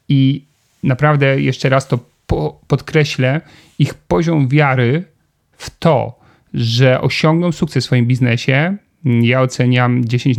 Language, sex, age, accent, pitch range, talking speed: Polish, male, 40-59, native, 125-145 Hz, 115 wpm